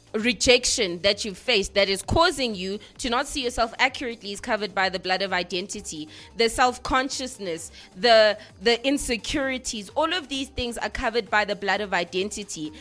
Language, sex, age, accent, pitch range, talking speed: English, female, 20-39, South African, 200-255 Hz, 165 wpm